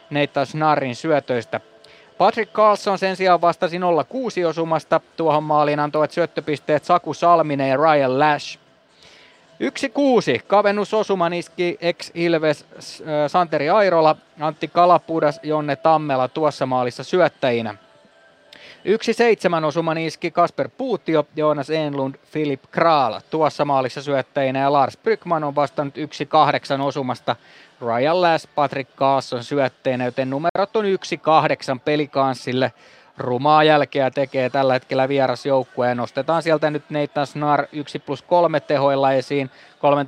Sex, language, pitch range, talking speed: male, Finnish, 135-165 Hz, 120 wpm